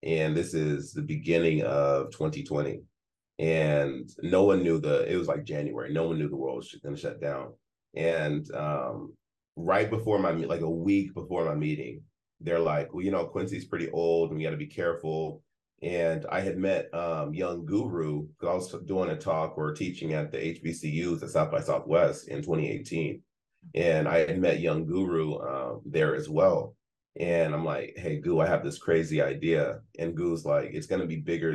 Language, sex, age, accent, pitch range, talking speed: English, male, 30-49, American, 75-95 Hz, 190 wpm